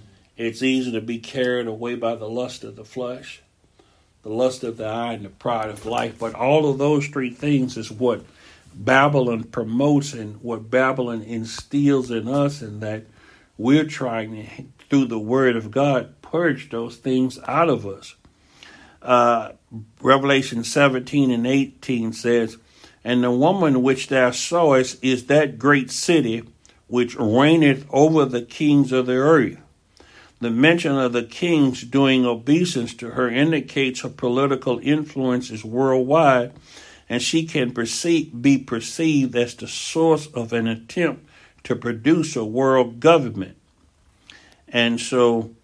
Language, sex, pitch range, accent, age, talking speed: English, male, 115-140 Hz, American, 60-79, 145 wpm